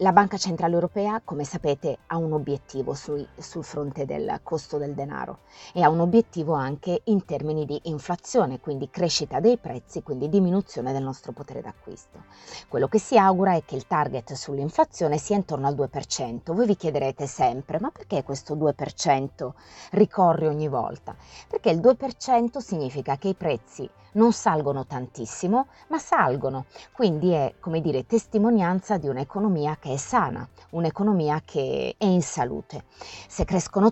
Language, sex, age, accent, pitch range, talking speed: Italian, female, 30-49, native, 140-200 Hz, 155 wpm